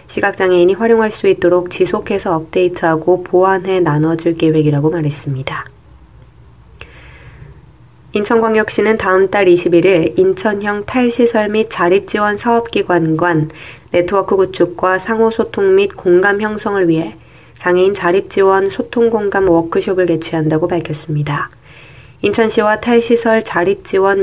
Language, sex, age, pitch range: Korean, female, 20-39, 170-200 Hz